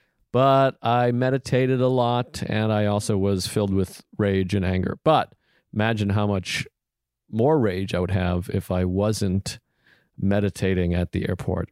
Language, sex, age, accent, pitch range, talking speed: English, male, 40-59, American, 95-120 Hz, 155 wpm